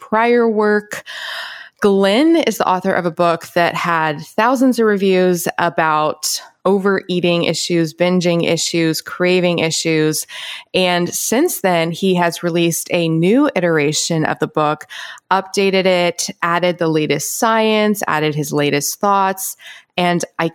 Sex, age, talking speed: female, 20-39, 130 wpm